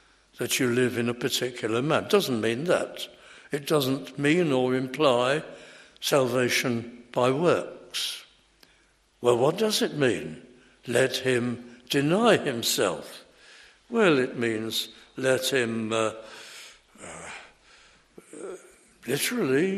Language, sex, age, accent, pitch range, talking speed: English, male, 60-79, British, 125-215 Hz, 105 wpm